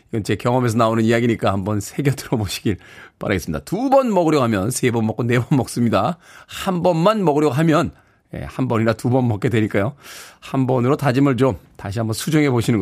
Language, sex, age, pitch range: Korean, male, 40-59, 130-220 Hz